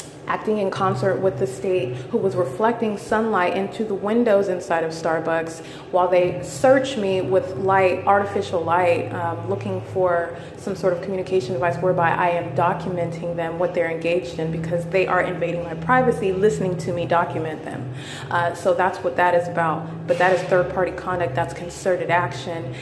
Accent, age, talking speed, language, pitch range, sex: American, 30-49, 180 wpm, English, 170-190 Hz, female